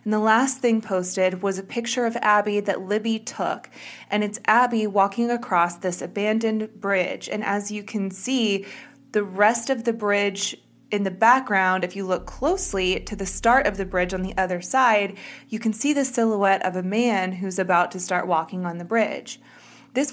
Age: 20-39